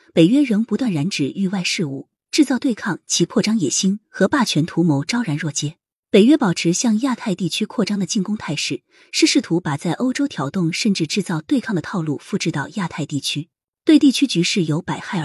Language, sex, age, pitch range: Chinese, female, 20-39, 155-240 Hz